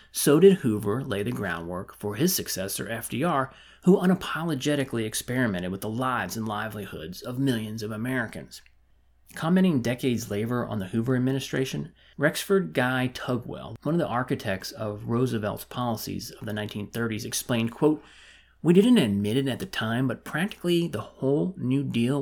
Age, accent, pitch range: 30-49, American, 105-140 Hz